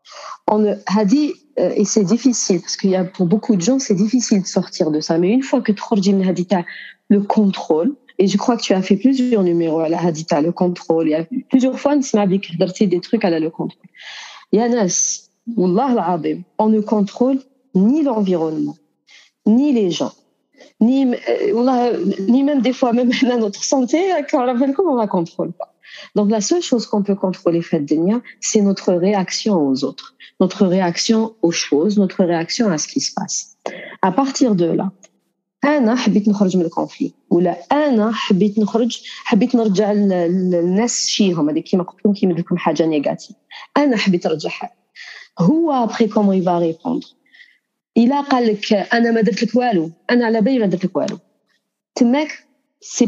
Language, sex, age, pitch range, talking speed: Arabic, female, 40-59, 180-245 Hz, 190 wpm